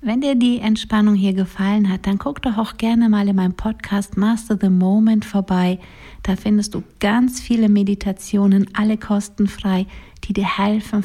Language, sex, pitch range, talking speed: German, female, 180-210 Hz, 170 wpm